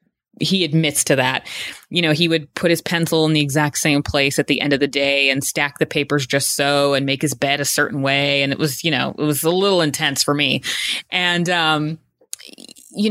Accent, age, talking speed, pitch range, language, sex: American, 20-39, 230 wpm, 135-165 Hz, English, female